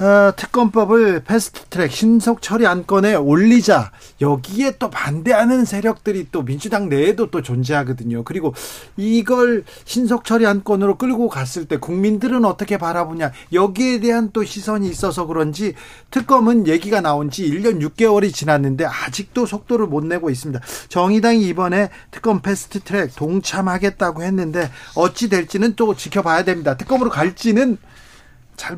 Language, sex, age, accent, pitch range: Korean, male, 40-59, native, 155-225 Hz